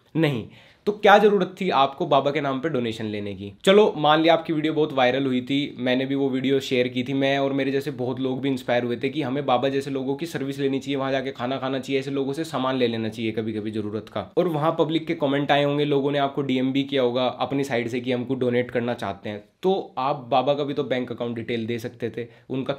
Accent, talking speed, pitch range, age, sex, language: native, 260 wpm, 130-155 Hz, 20-39, male, Hindi